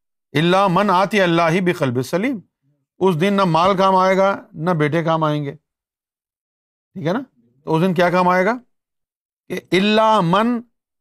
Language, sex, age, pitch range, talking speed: Urdu, male, 50-69, 130-185 Hz, 195 wpm